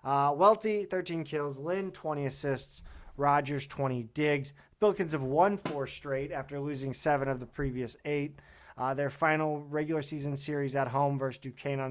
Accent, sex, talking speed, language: American, male, 165 wpm, English